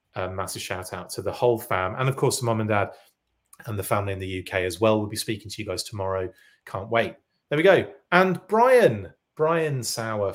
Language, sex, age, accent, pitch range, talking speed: English, male, 30-49, British, 100-130 Hz, 225 wpm